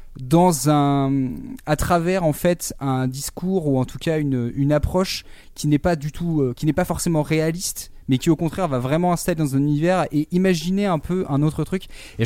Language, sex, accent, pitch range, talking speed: French, male, French, 125-170 Hz, 215 wpm